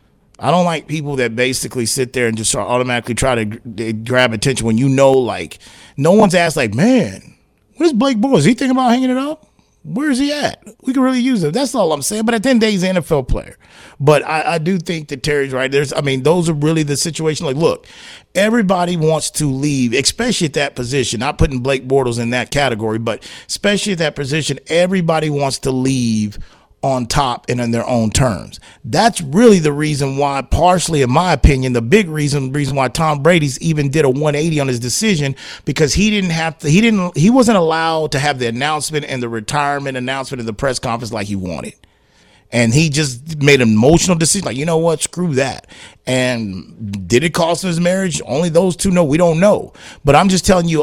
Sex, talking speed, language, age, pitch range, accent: male, 215 wpm, English, 30-49, 130-180 Hz, American